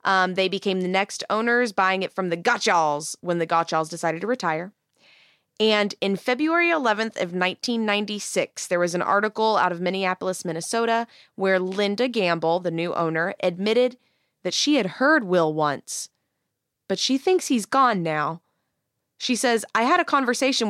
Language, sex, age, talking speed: English, female, 20-39, 160 wpm